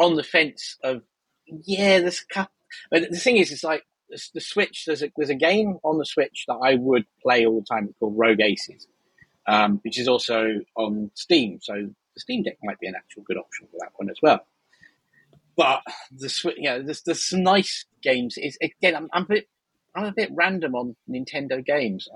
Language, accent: English, British